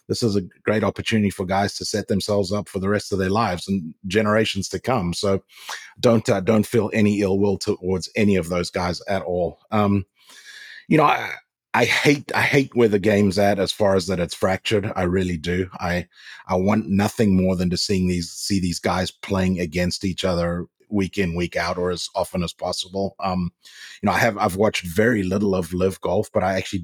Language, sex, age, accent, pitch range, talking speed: English, male, 30-49, Australian, 90-105 Hz, 215 wpm